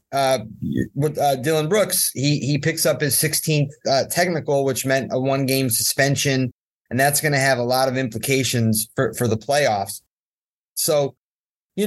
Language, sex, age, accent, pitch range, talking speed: English, male, 30-49, American, 120-150 Hz, 165 wpm